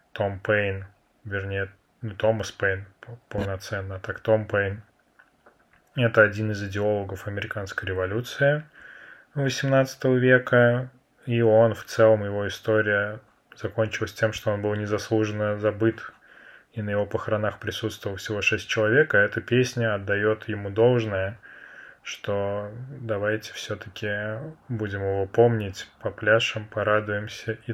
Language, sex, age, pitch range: Russian, male, 20-39, 100-115 Hz